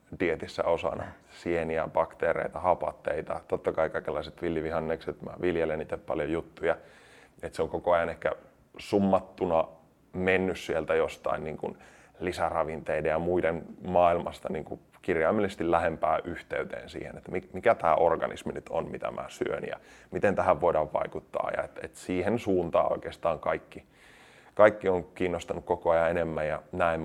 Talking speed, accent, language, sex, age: 140 wpm, native, Finnish, male, 20-39